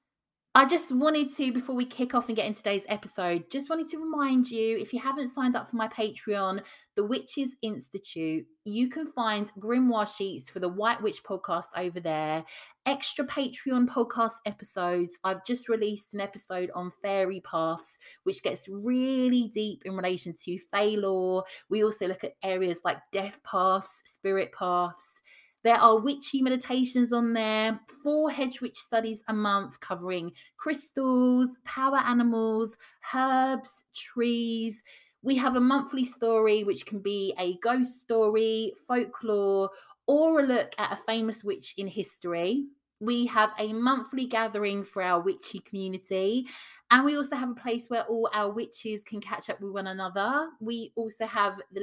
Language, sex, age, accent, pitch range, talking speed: English, female, 20-39, British, 190-255 Hz, 160 wpm